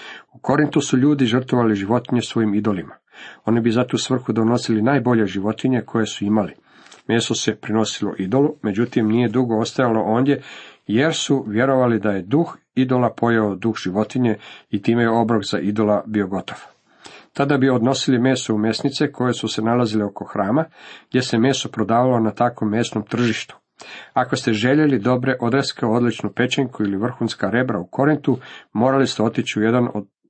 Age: 50-69